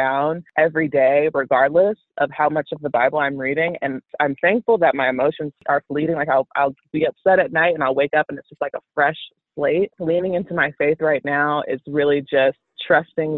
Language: English